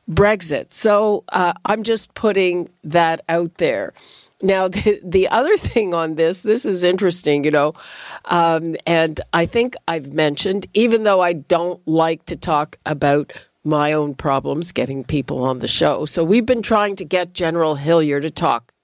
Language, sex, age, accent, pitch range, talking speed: English, female, 50-69, American, 165-225 Hz, 170 wpm